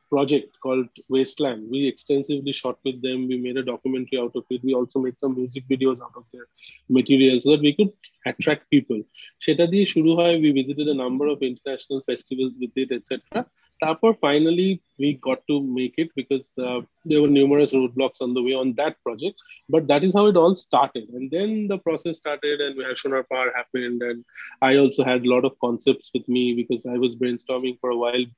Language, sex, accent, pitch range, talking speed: Bengali, male, native, 125-155 Hz, 200 wpm